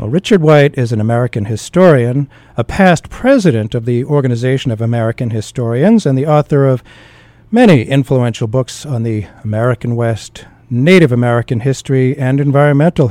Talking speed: 145 wpm